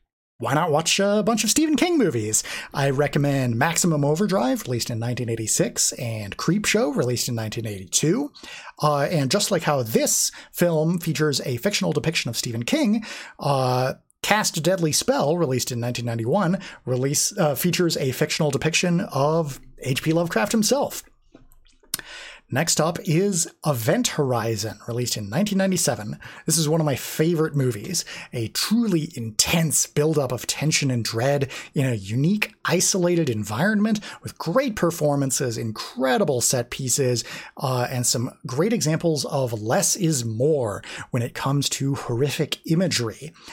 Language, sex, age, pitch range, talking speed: English, male, 30-49, 125-180 Hz, 140 wpm